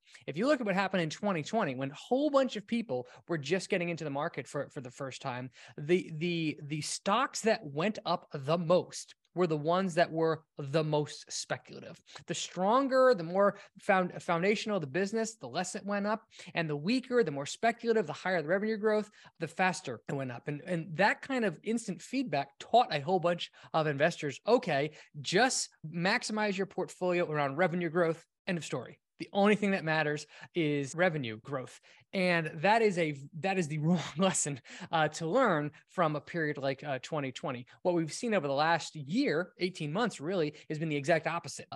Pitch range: 150-195 Hz